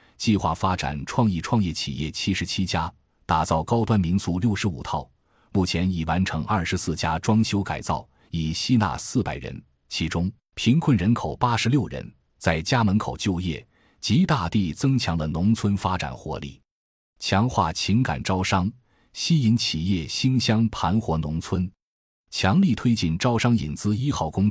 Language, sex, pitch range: Chinese, male, 80-110 Hz